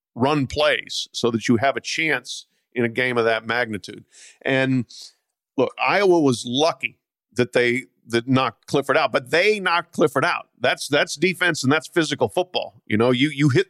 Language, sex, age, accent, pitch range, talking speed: English, male, 50-69, American, 120-165 Hz, 185 wpm